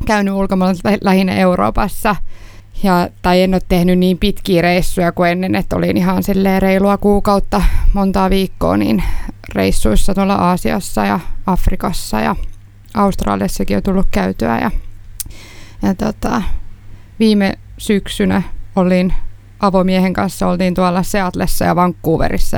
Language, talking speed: Finnish, 120 wpm